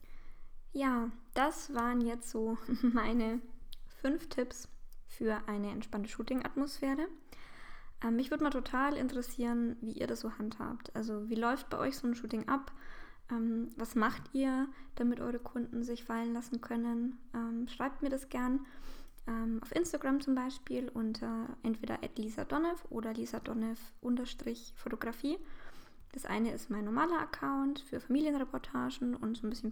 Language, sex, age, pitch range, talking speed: German, female, 20-39, 230-270 Hz, 145 wpm